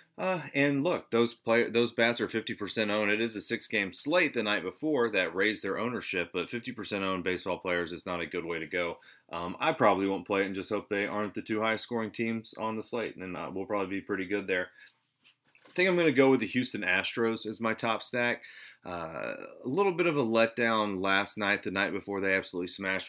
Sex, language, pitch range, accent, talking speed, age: male, English, 95-115 Hz, American, 230 wpm, 30-49